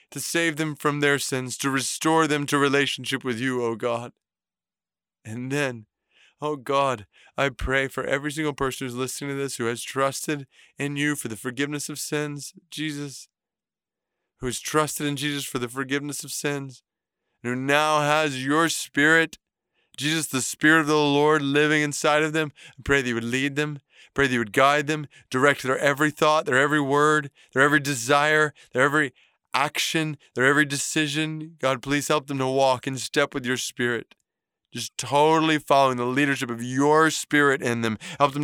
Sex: male